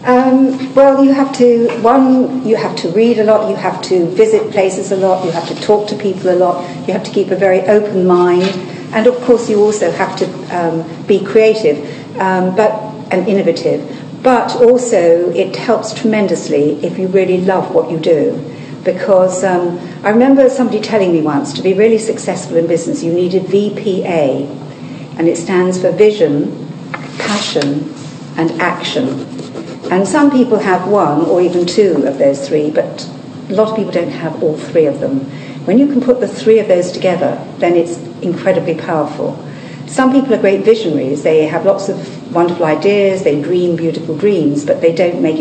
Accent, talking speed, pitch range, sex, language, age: British, 185 wpm, 165-220 Hz, female, English, 50-69